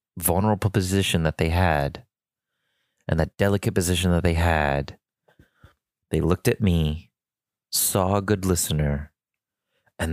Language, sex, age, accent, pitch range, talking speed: English, male, 30-49, American, 75-100 Hz, 125 wpm